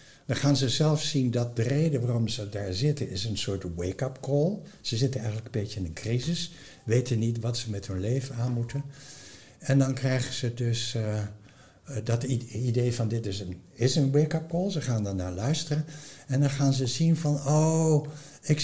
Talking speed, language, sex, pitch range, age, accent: 200 wpm, Dutch, male, 115-155 Hz, 60-79, Dutch